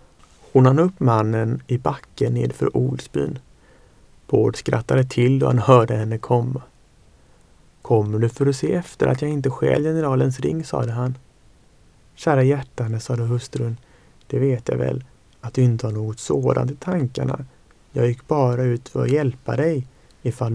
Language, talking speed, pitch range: Swedish, 160 wpm, 110-130 Hz